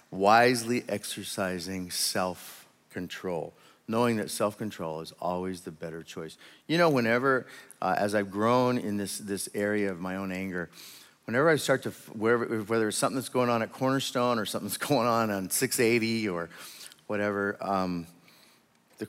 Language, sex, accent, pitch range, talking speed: English, male, American, 95-120 Hz, 160 wpm